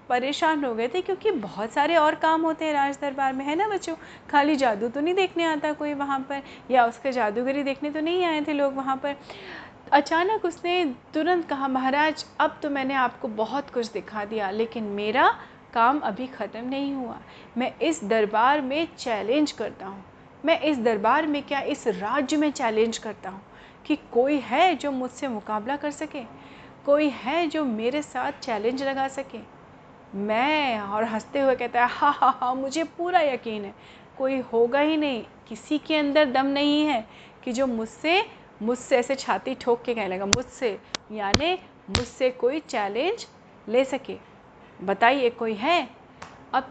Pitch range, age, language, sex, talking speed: 230-300 Hz, 30-49, Hindi, female, 170 wpm